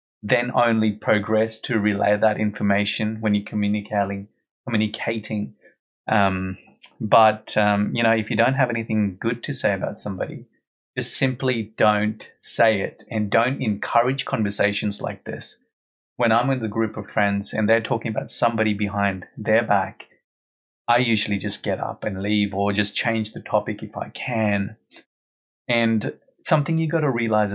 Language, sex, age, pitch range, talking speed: English, male, 30-49, 100-115 Hz, 160 wpm